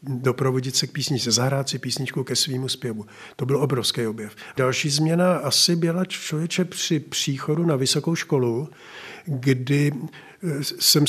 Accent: native